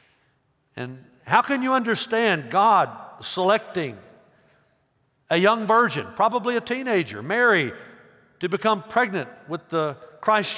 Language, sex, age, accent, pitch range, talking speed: English, male, 60-79, American, 150-215 Hz, 115 wpm